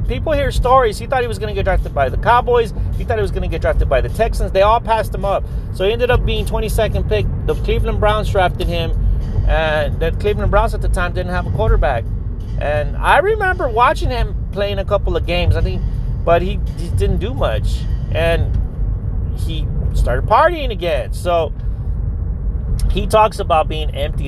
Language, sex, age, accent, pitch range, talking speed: English, male, 30-49, American, 95-155 Hz, 205 wpm